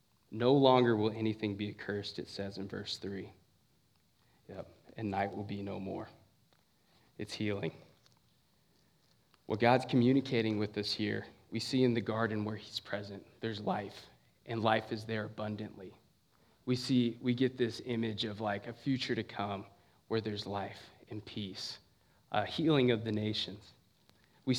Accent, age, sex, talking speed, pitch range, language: American, 20-39, male, 160 wpm, 105-125 Hz, English